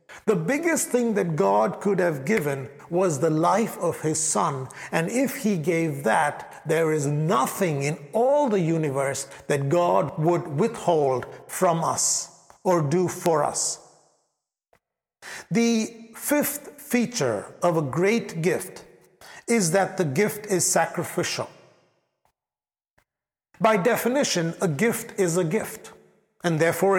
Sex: male